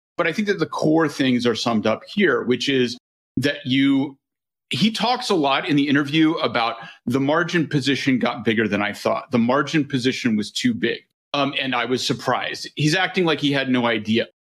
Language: English